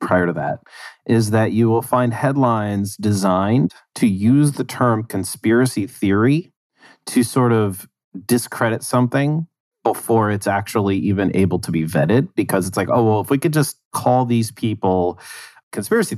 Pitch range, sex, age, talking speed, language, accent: 95-115 Hz, male, 30-49, 155 wpm, English, American